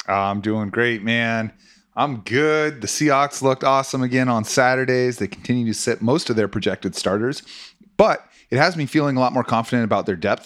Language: English